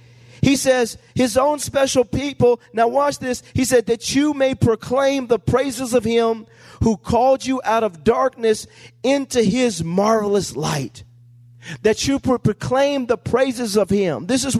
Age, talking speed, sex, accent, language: 40-59, 155 wpm, male, American, English